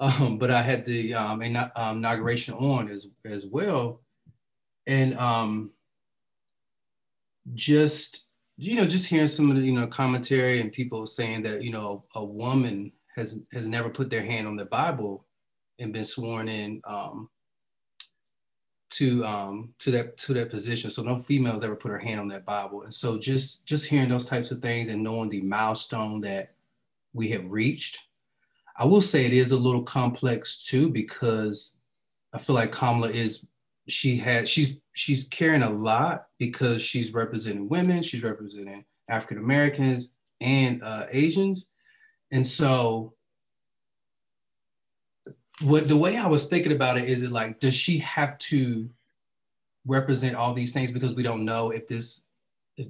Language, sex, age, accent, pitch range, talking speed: English, male, 30-49, American, 110-135 Hz, 160 wpm